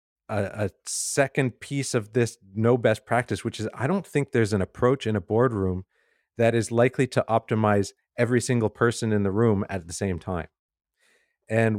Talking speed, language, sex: 180 wpm, English, male